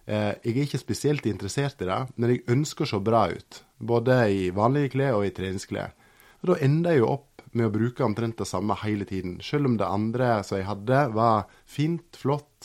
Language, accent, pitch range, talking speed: English, Norwegian, 105-130 Hz, 190 wpm